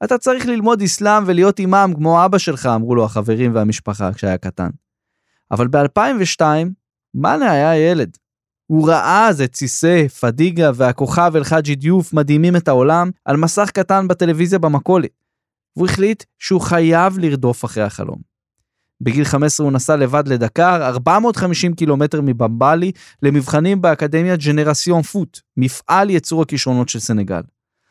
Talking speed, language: 135 wpm, Hebrew